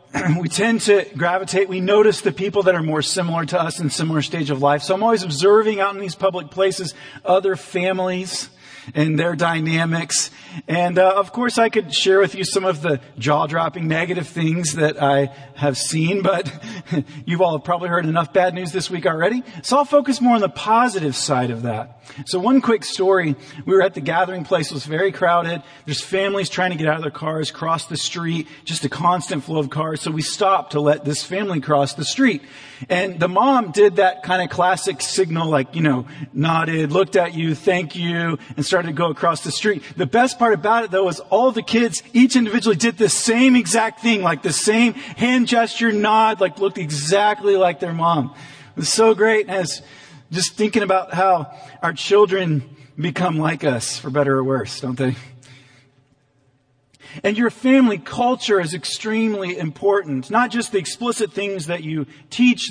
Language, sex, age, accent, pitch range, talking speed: English, male, 40-59, American, 150-200 Hz, 195 wpm